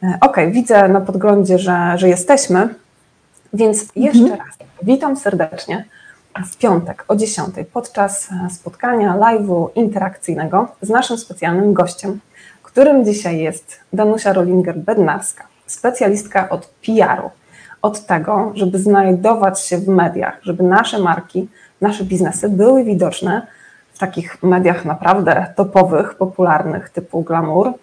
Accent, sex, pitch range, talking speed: native, female, 180-215 Hz, 120 wpm